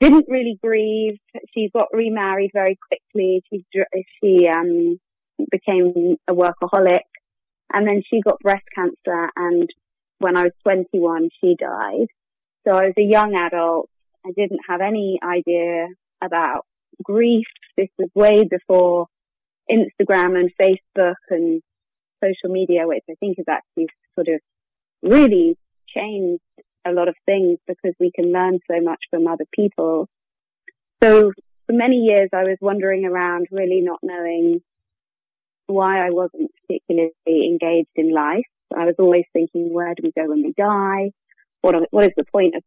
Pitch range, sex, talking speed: 175-205 Hz, female, 150 wpm